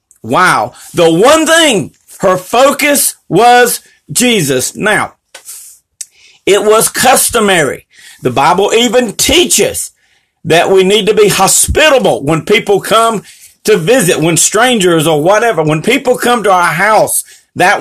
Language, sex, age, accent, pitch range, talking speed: English, male, 40-59, American, 205-265 Hz, 130 wpm